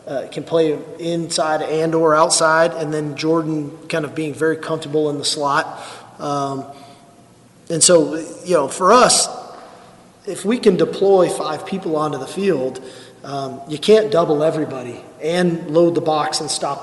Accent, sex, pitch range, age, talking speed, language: American, male, 145-170 Hz, 30-49, 160 wpm, English